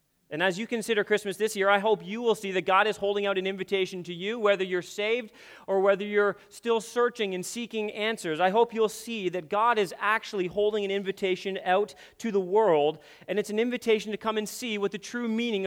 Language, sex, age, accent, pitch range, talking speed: English, male, 30-49, American, 185-220 Hz, 225 wpm